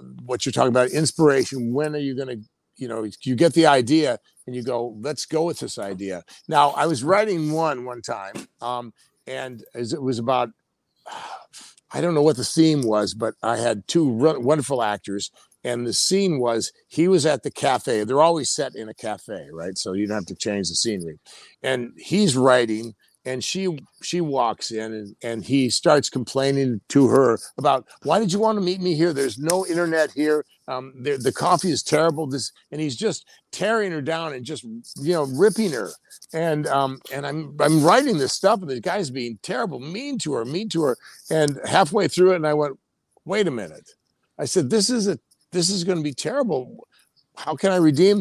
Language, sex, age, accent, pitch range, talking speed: English, male, 50-69, American, 125-175 Hz, 205 wpm